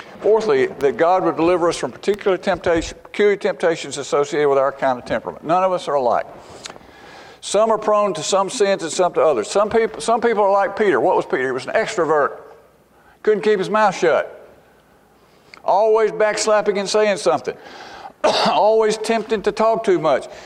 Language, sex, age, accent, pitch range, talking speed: English, male, 50-69, American, 185-240 Hz, 180 wpm